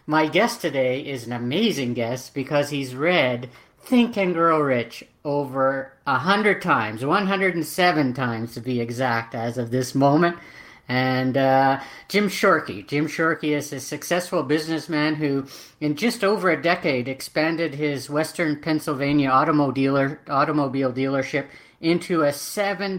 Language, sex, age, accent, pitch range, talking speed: English, female, 50-69, American, 135-165 Hz, 135 wpm